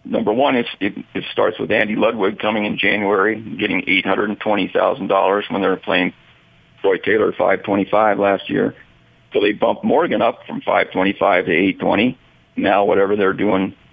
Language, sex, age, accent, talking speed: English, male, 50-69, American, 200 wpm